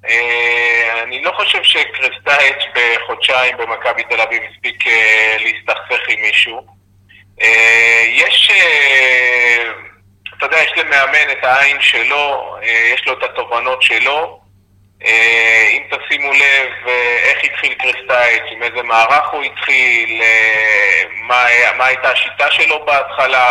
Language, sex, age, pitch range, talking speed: Hebrew, male, 30-49, 105-125 Hz, 130 wpm